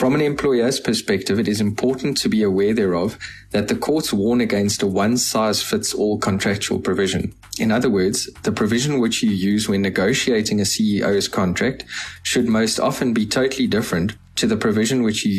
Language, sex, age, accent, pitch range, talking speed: English, male, 20-39, South African, 95-120 Hz, 170 wpm